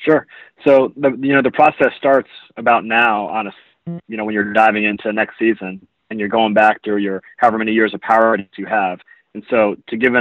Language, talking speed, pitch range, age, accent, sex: English, 225 wpm, 105-115 Hz, 30-49, American, male